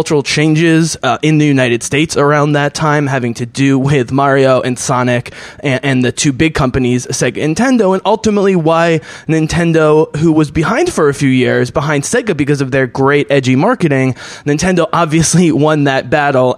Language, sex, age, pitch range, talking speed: English, male, 20-39, 130-165 Hz, 175 wpm